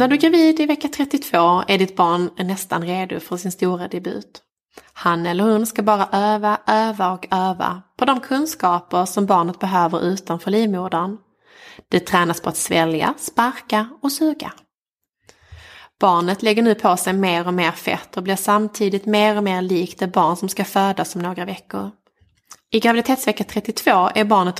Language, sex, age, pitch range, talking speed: English, female, 20-39, 175-215 Hz, 170 wpm